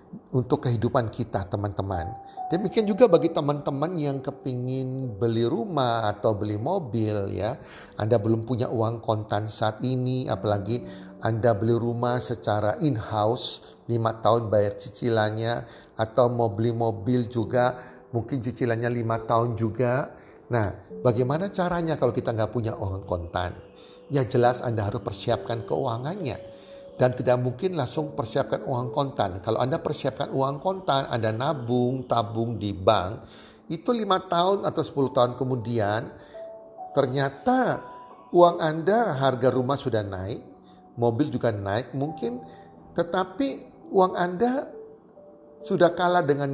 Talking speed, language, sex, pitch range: 130 wpm, Indonesian, male, 115-145 Hz